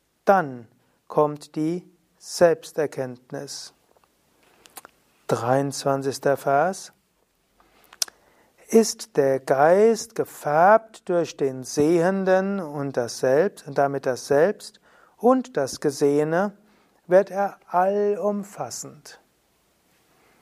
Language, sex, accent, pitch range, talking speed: German, male, German, 150-200 Hz, 75 wpm